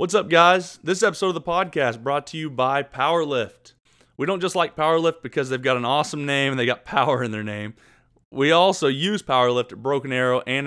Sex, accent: male, American